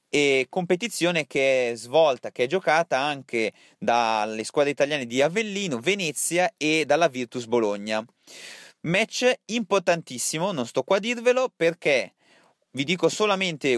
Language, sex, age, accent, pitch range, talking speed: Italian, male, 30-49, native, 125-175 Hz, 130 wpm